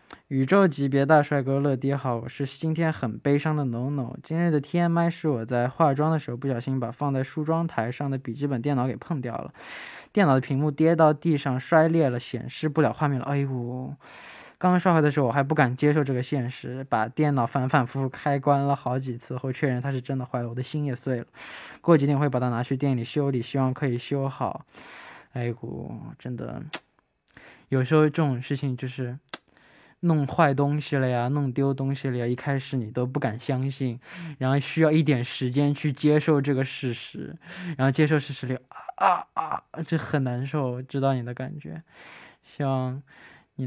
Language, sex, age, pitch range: Chinese, male, 10-29, 130-150 Hz